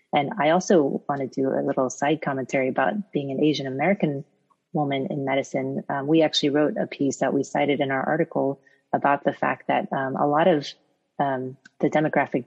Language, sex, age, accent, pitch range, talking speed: English, female, 30-49, American, 135-155 Hz, 195 wpm